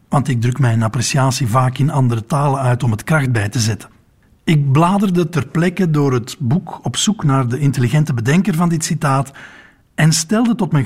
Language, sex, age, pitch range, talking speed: Dutch, male, 60-79, 125-165 Hz, 200 wpm